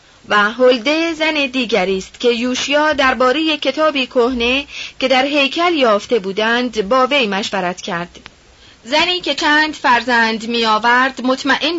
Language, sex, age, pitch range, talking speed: Persian, female, 30-49, 230-285 Hz, 125 wpm